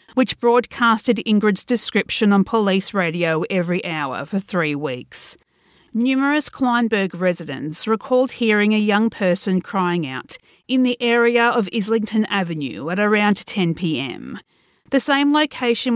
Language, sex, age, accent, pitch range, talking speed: English, female, 40-59, Australian, 190-245 Hz, 130 wpm